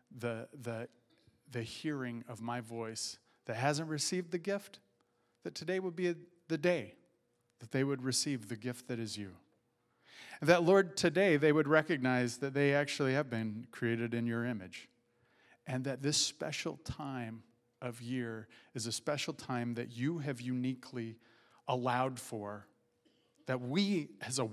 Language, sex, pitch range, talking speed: English, male, 125-170 Hz, 155 wpm